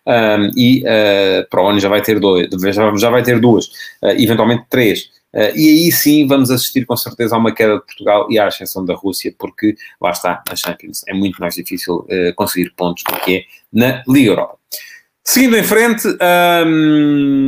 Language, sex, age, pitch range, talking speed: Portuguese, male, 30-49, 105-145 Hz, 190 wpm